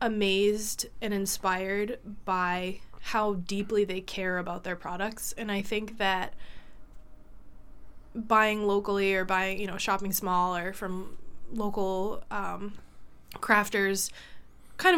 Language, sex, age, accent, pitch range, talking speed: English, female, 20-39, American, 185-210 Hz, 115 wpm